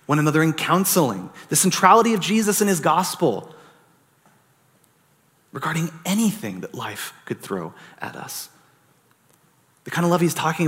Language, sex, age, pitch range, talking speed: English, male, 30-49, 125-170 Hz, 140 wpm